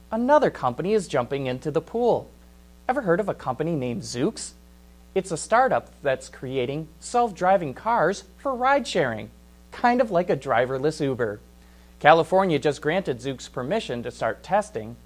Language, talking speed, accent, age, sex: English, 145 wpm, American, 30-49, male